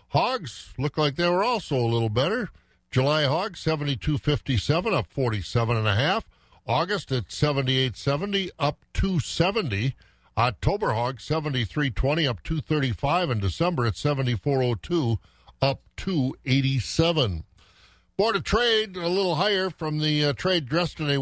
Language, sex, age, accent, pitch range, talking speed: English, male, 50-69, American, 115-155 Hz, 115 wpm